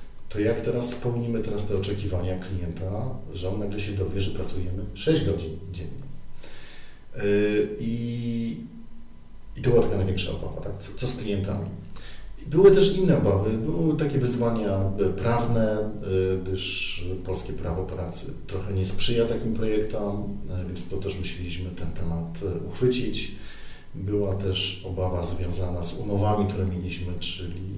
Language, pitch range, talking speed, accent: Polish, 95-115 Hz, 140 wpm, native